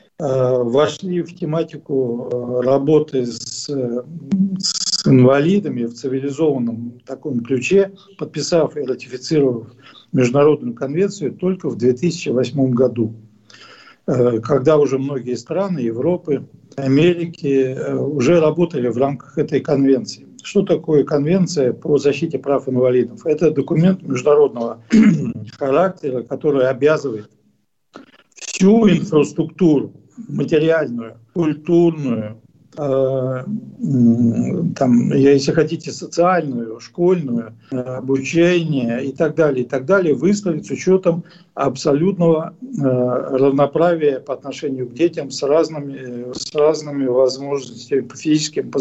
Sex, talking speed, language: male, 95 wpm, Russian